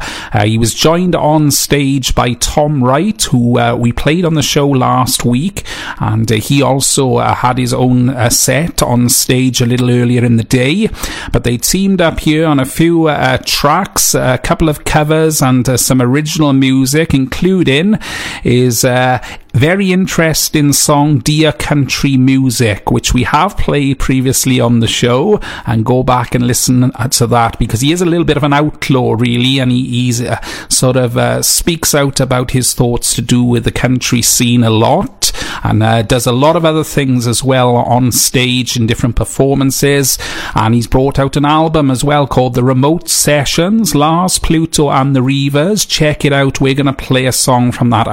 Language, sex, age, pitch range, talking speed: English, male, 40-59, 120-145 Hz, 190 wpm